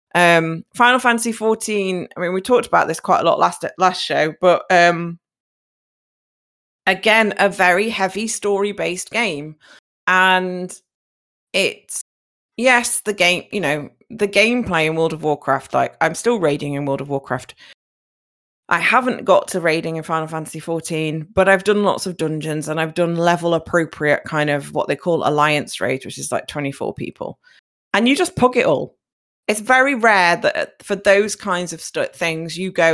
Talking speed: 175 wpm